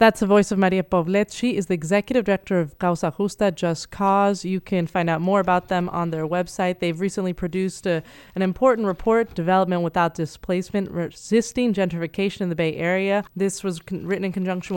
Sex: female